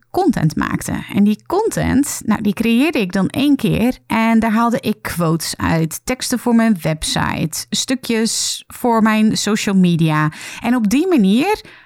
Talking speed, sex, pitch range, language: 155 wpm, female, 175-240 Hz, Dutch